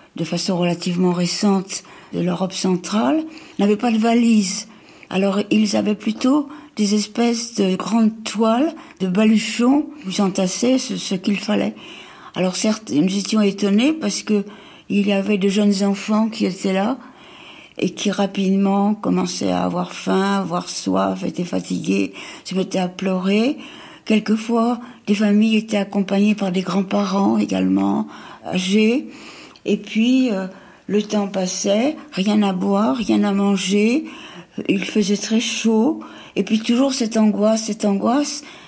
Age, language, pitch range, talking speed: 60-79, French, 195-235 Hz, 145 wpm